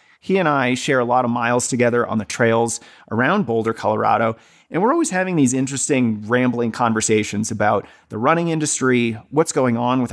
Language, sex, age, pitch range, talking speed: English, male, 30-49, 120-155 Hz, 185 wpm